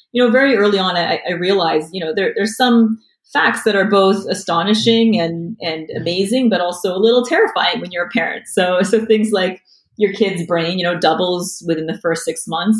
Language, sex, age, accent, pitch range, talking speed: English, female, 30-49, American, 180-225 Hz, 210 wpm